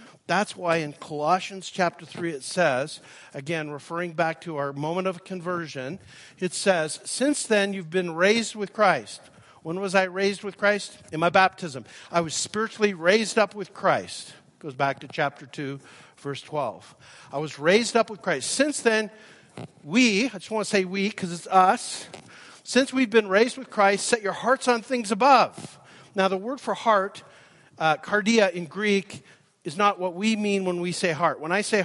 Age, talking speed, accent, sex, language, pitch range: 50-69, 185 wpm, American, male, English, 150-200 Hz